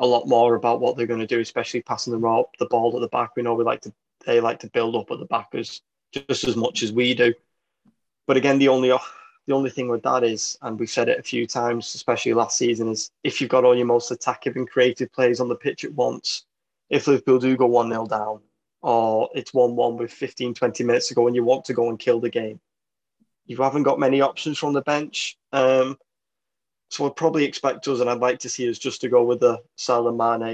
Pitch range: 120-135 Hz